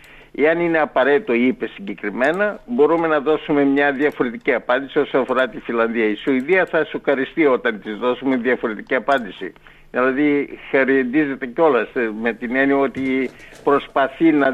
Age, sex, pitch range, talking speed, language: 60-79, male, 135-175 Hz, 135 wpm, Greek